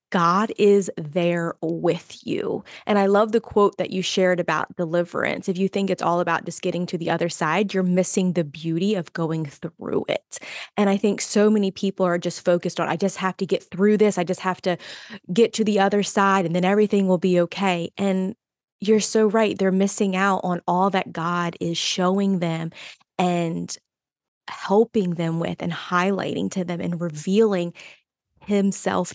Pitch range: 175-200 Hz